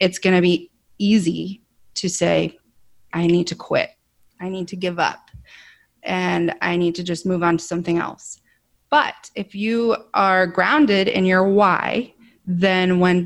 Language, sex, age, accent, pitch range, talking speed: English, female, 20-39, American, 175-205 Hz, 165 wpm